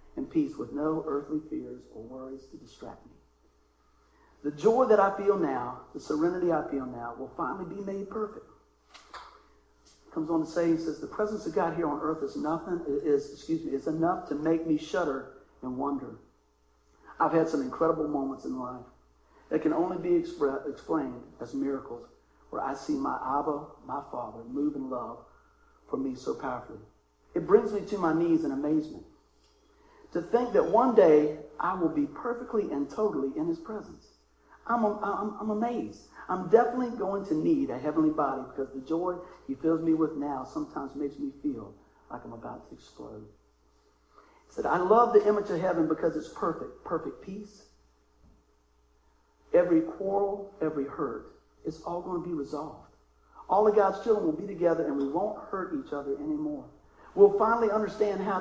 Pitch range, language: 140-210 Hz, English